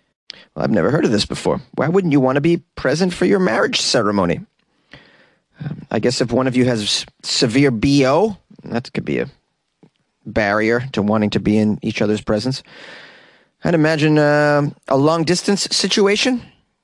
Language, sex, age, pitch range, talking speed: English, male, 30-49, 110-150 Hz, 165 wpm